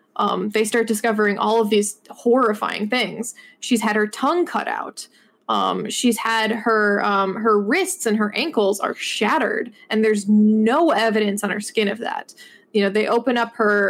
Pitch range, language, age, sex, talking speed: 210-240 Hz, English, 20-39, female, 180 wpm